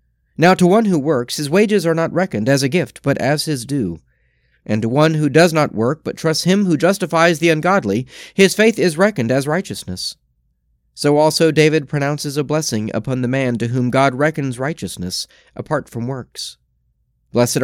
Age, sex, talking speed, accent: 30-49, male, 185 wpm, American